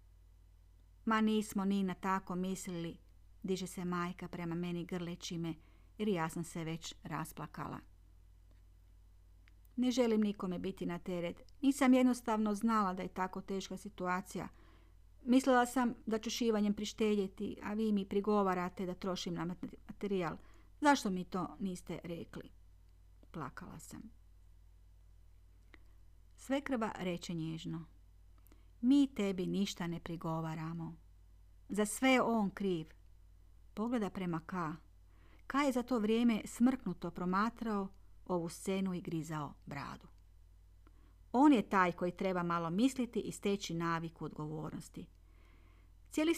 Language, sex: Croatian, female